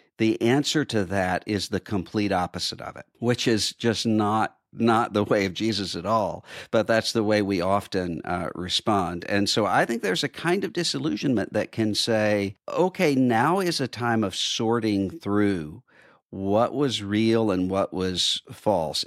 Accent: American